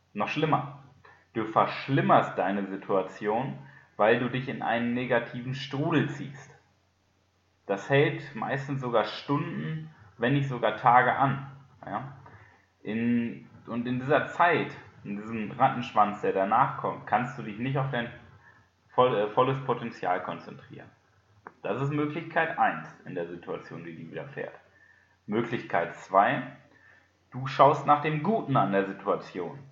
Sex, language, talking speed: male, German, 135 wpm